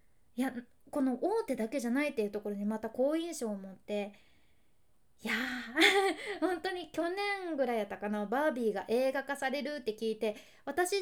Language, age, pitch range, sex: Japanese, 20-39, 225-310 Hz, female